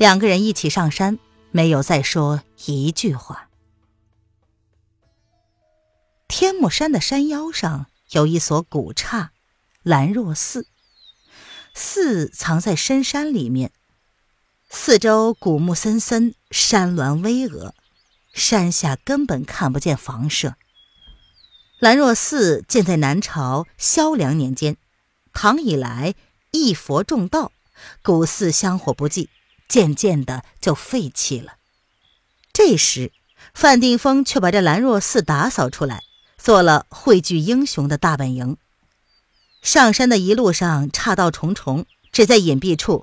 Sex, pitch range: female, 140-220 Hz